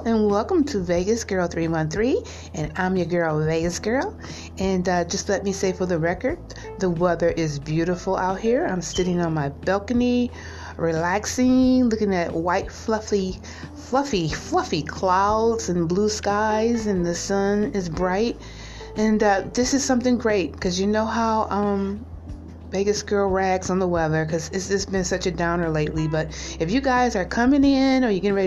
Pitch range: 160-215 Hz